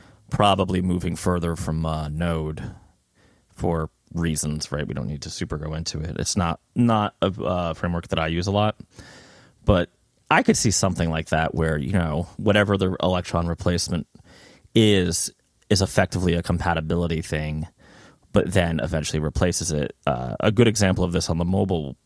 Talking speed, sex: 170 wpm, male